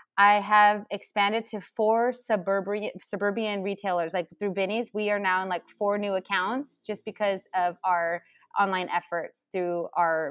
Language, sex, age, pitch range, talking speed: English, female, 20-39, 175-220 Hz, 155 wpm